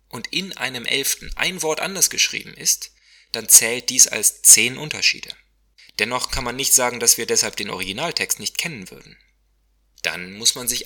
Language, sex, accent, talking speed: German, male, German, 175 wpm